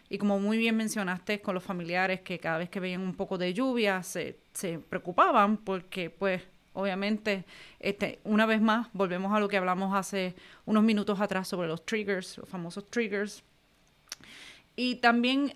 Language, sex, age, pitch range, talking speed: Spanish, female, 30-49, 180-210 Hz, 170 wpm